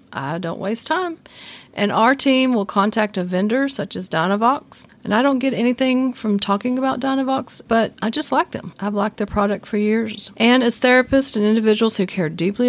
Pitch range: 200-255 Hz